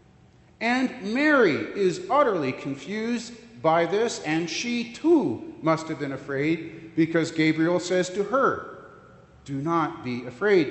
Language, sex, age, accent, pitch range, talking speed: English, male, 40-59, American, 130-180 Hz, 130 wpm